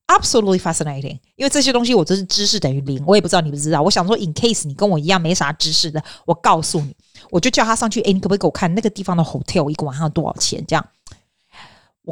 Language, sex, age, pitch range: Chinese, female, 30-49, 155-225 Hz